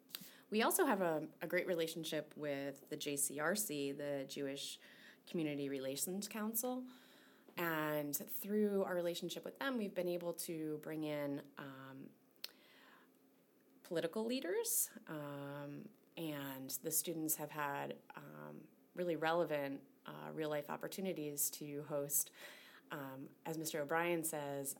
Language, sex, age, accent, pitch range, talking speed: English, female, 30-49, American, 140-175 Hz, 120 wpm